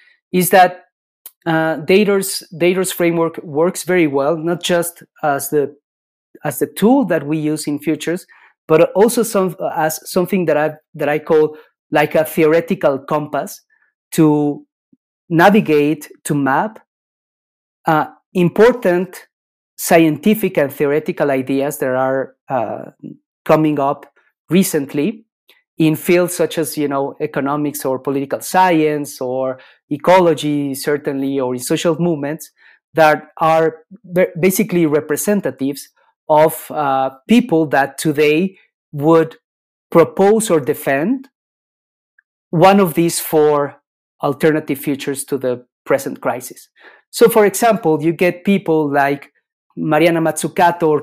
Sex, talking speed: male, 115 wpm